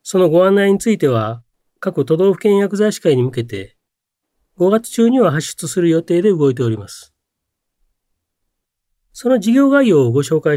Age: 40-59